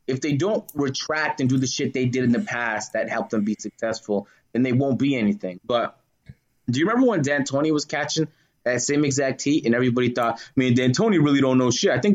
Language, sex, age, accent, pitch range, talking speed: English, male, 20-39, American, 120-150 Hz, 235 wpm